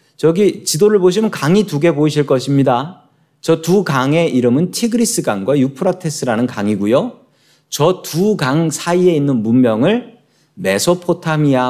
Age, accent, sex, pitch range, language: 40-59, native, male, 135-185 Hz, Korean